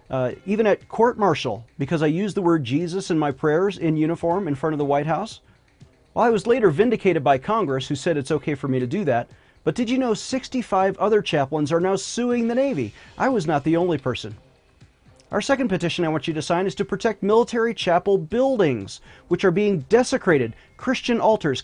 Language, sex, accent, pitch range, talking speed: English, male, American, 140-200 Hz, 210 wpm